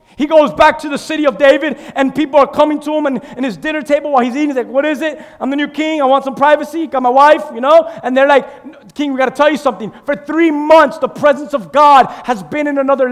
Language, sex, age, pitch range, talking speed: English, male, 30-49, 270-310 Hz, 280 wpm